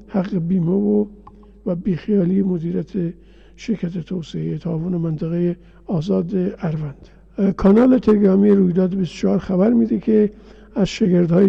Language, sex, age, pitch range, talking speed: Persian, male, 50-69, 175-200 Hz, 110 wpm